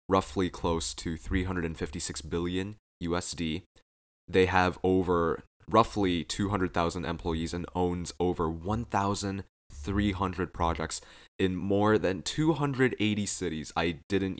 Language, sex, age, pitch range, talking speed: English, male, 20-39, 85-105 Hz, 95 wpm